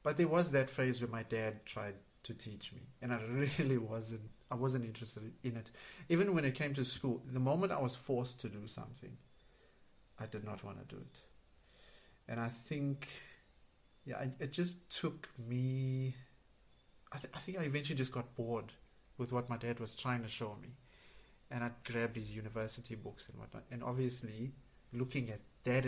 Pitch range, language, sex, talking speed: 115-140 Hz, English, male, 185 wpm